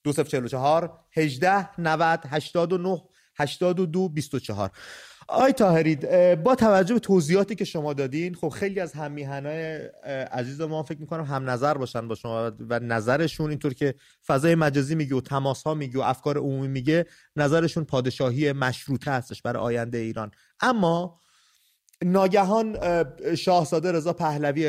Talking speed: 125 wpm